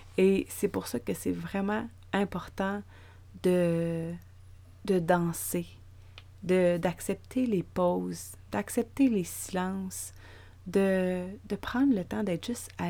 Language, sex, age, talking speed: French, female, 30-49, 115 wpm